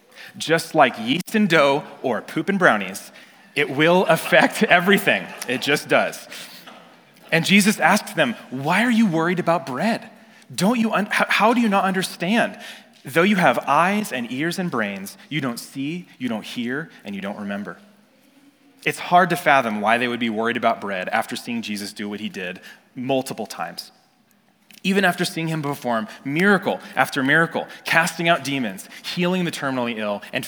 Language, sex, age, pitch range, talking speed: English, male, 30-49, 135-210 Hz, 175 wpm